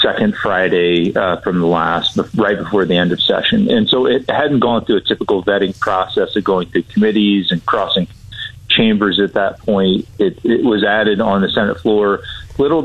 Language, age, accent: English, 40-59, American